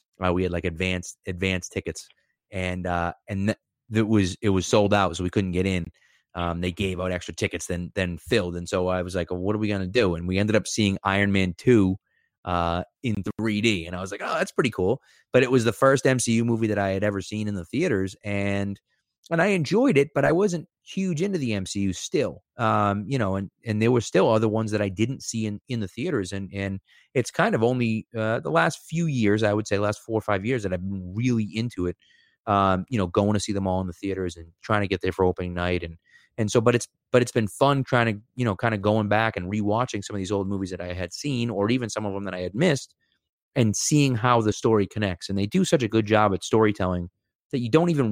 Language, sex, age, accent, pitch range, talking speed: English, male, 30-49, American, 95-120 Hz, 260 wpm